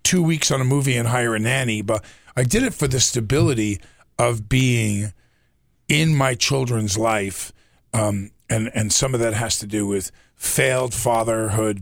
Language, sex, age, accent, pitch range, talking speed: English, male, 40-59, American, 100-120 Hz, 175 wpm